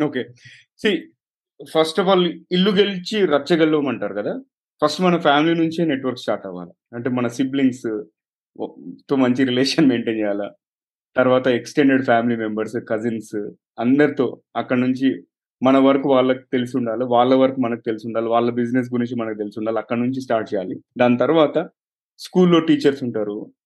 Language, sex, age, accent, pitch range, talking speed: Telugu, male, 30-49, native, 120-145 Hz, 140 wpm